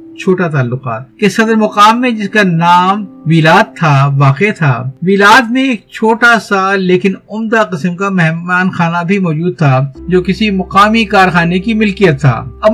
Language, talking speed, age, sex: Urdu, 165 wpm, 50-69, male